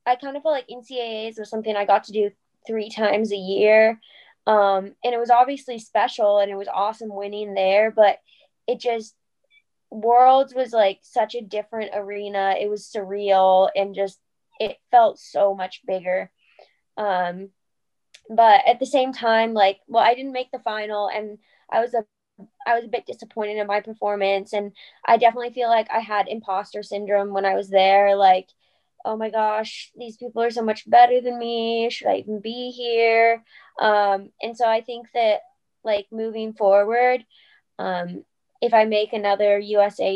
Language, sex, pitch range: English, female, 195-230 Hz